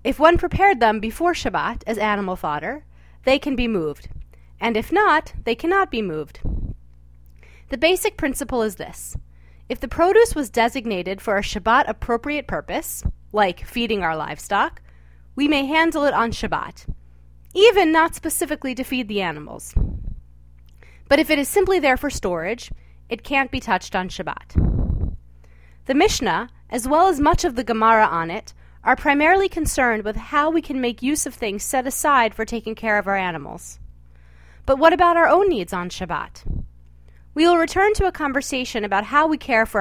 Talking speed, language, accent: 170 wpm, English, American